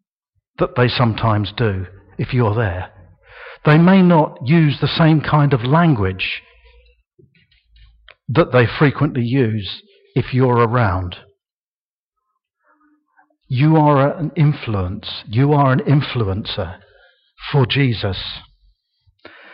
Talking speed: 100 wpm